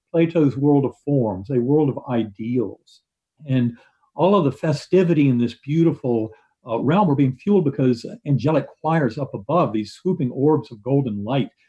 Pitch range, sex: 115-145 Hz, male